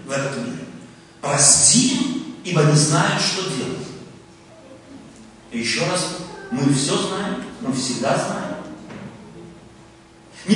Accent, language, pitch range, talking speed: native, Russian, 160-270 Hz, 110 wpm